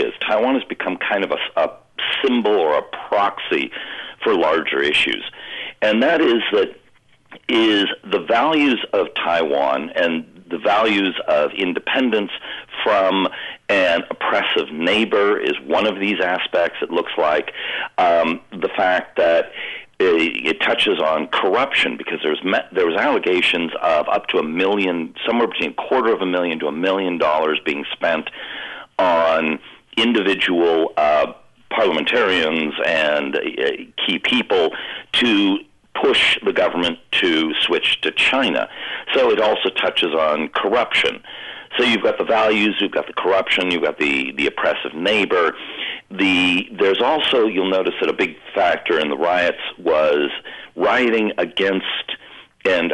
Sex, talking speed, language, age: male, 140 wpm, English, 50-69